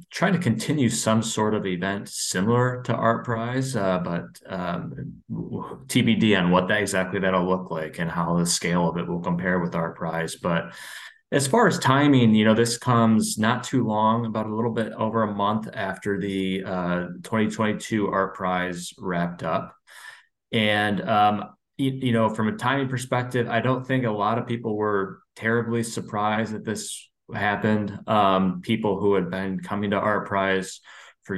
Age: 20-39